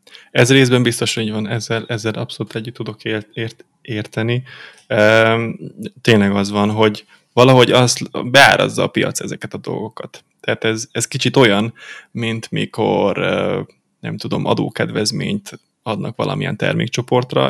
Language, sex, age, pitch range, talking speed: Hungarian, male, 20-39, 105-120 Hz, 125 wpm